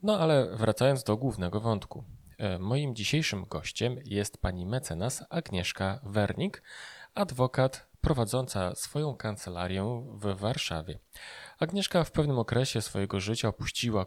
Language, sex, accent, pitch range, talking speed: Polish, male, native, 100-130 Hz, 115 wpm